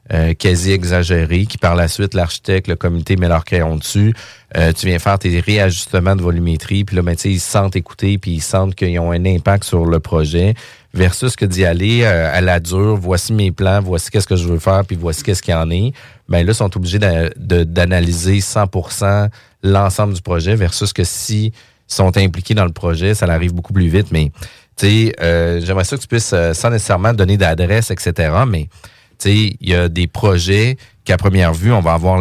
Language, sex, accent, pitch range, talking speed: French, male, Canadian, 90-105 Hz, 210 wpm